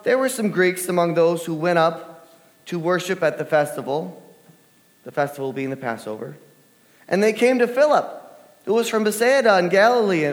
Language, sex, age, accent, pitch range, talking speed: English, male, 30-49, American, 160-215 Hz, 175 wpm